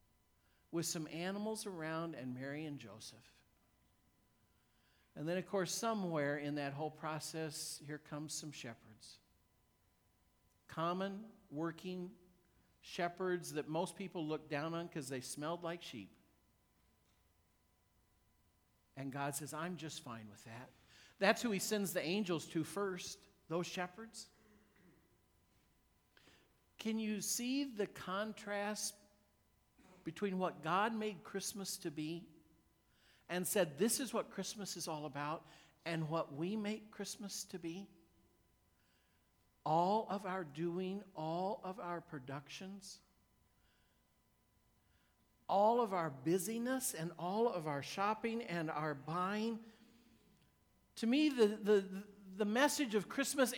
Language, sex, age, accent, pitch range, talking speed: English, male, 50-69, American, 145-205 Hz, 120 wpm